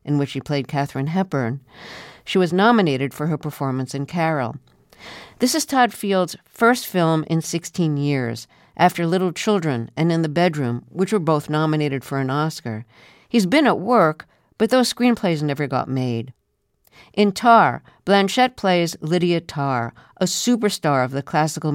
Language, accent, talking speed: English, American, 160 wpm